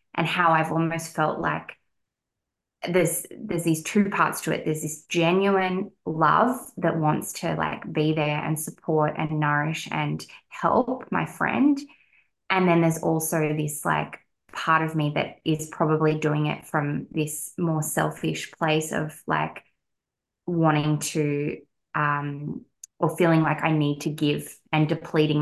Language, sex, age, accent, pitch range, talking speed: English, female, 20-39, Australian, 155-175 Hz, 150 wpm